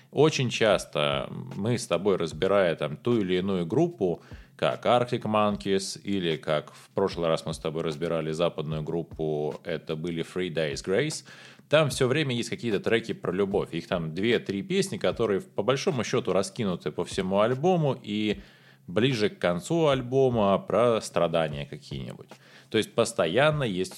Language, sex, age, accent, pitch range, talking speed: Russian, male, 20-39, native, 90-125 Hz, 155 wpm